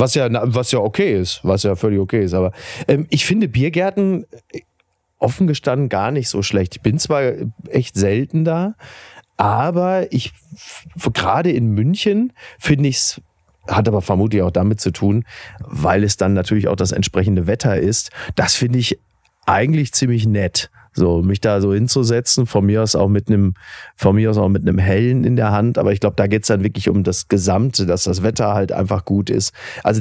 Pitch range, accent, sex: 100-130 Hz, German, male